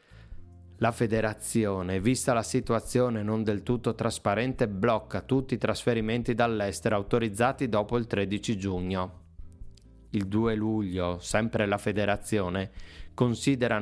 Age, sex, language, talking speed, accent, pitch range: 30-49, male, Italian, 115 wpm, native, 95-115 Hz